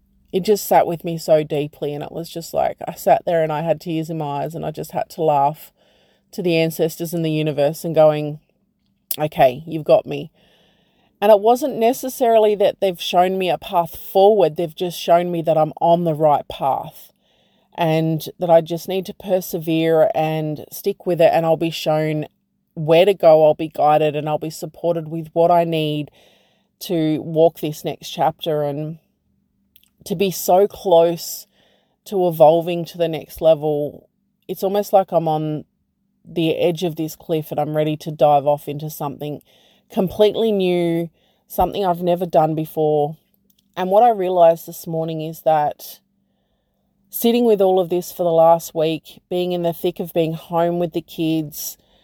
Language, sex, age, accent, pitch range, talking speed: English, female, 30-49, Australian, 155-180 Hz, 180 wpm